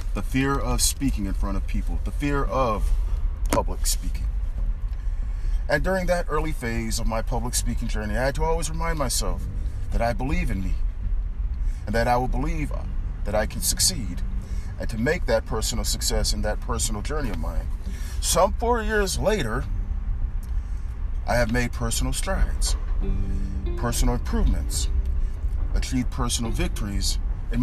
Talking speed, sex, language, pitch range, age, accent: 150 wpm, male, English, 75-115 Hz, 40-59, American